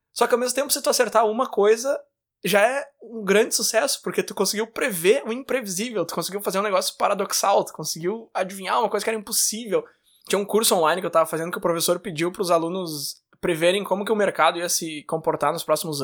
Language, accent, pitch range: Portuguese, Brazilian, 175-225 Hz